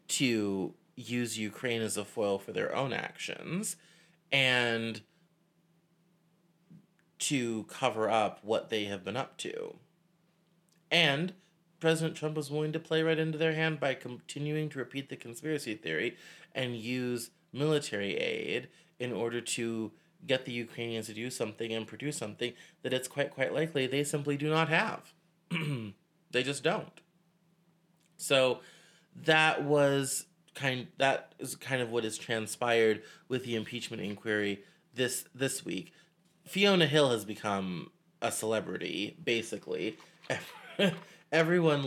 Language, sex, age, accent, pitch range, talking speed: English, male, 30-49, American, 115-170 Hz, 135 wpm